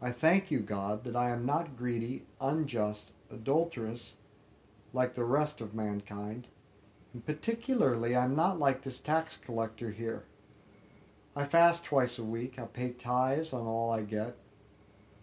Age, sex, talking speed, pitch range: 50-69, male, 150 wpm, 105-145 Hz